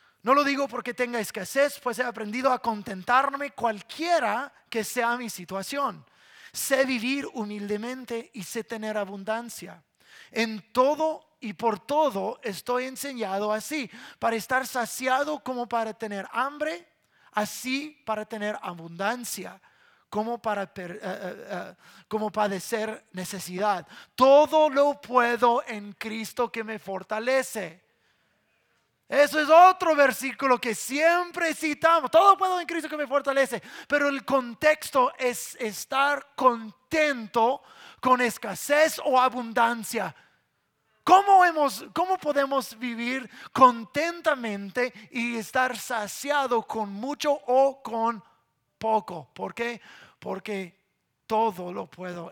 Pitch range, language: 215-280 Hz, English